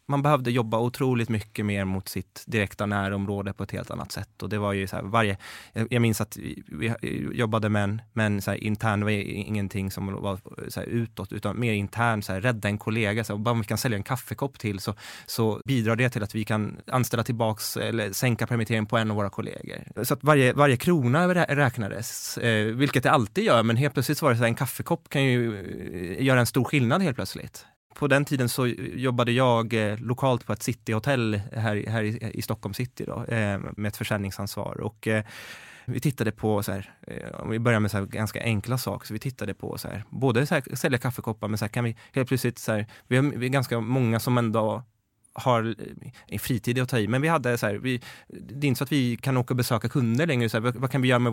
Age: 20-39